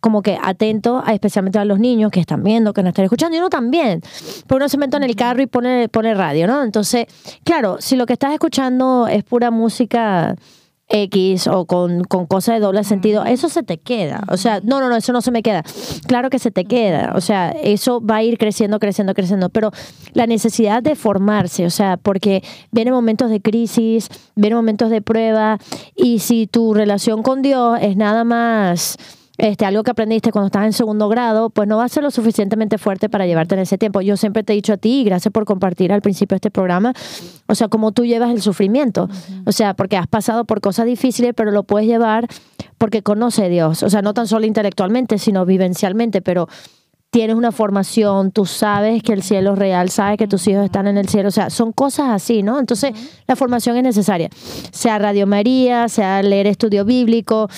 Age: 20-39